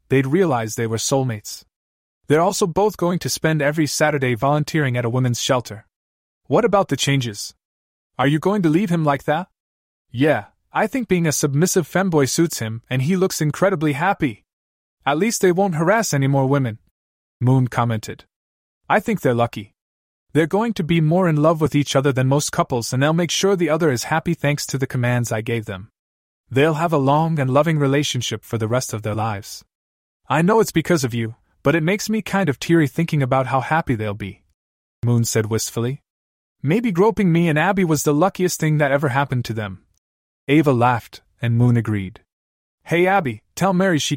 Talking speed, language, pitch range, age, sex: 195 wpm, English, 110-155 Hz, 20-39, male